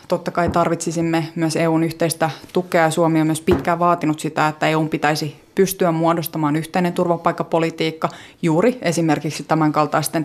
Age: 20-39